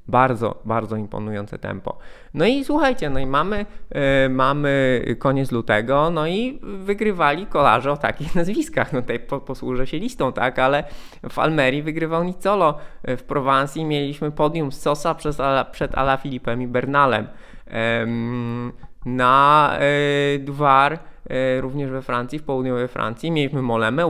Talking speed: 150 wpm